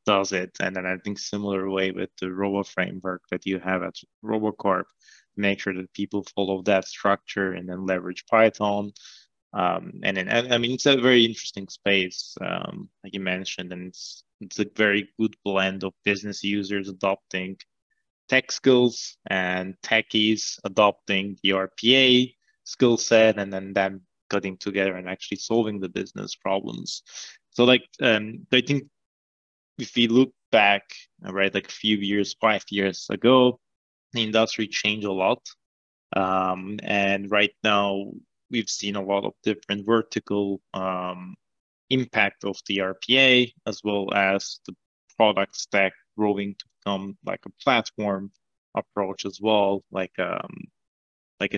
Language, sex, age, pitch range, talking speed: English, male, 20-39, 95-110 Hz, 150 wpm